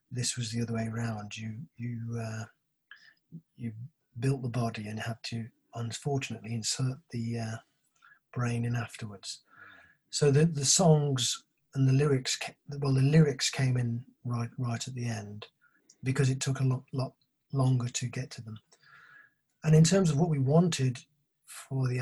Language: English